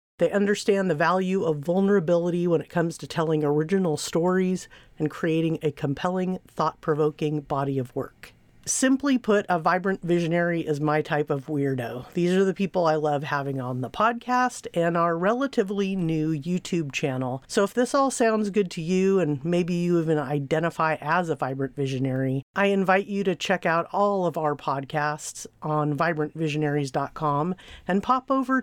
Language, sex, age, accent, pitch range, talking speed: English, female, 40-59, American, 155-195 Hz, 165 wpm